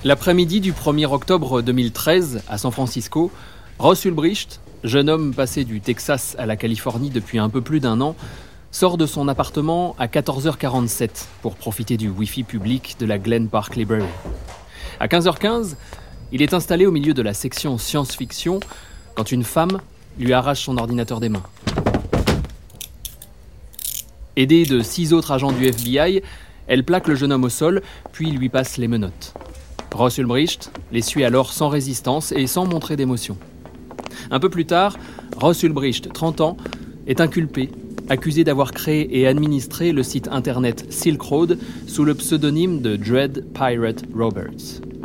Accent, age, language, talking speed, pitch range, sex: French, 30-49, French, 155 wpm, 120-160 Hz, male